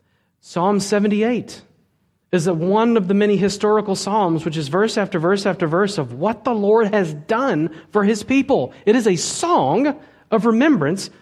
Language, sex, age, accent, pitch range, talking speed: English, male, 30-49, American, 125-170 Hz, 165 wpm